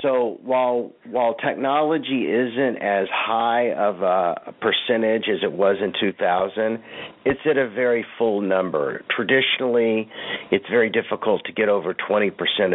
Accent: American